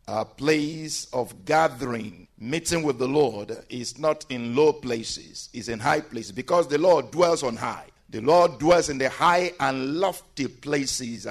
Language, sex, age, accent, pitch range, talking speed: English, male, 50-69, Nigerian, 125-170 Hz, 170 wpm